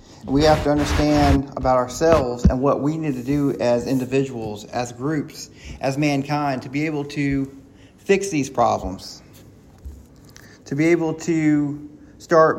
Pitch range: 135-190 Hz